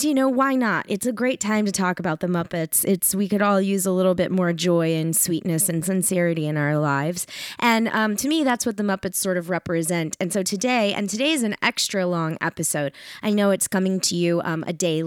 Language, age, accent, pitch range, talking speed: English, 20-39, American, 170-215 Hz, 240 wpm